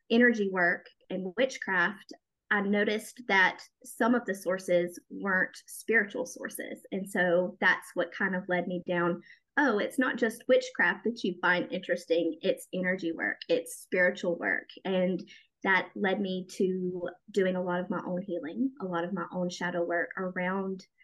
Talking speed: 165 wpm